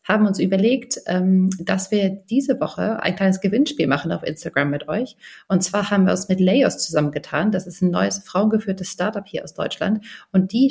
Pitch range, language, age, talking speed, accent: 185-220 Hz, German, 30-49, 190 wpm, German